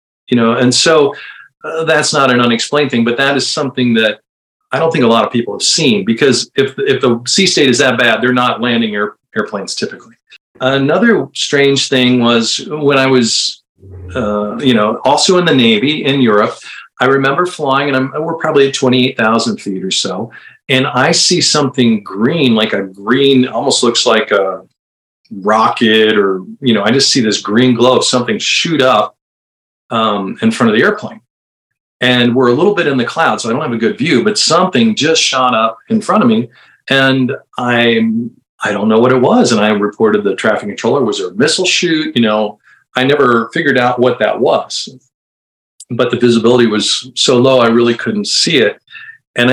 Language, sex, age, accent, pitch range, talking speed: English, male, 50-69, American, 110-145 Hz, 195 wpm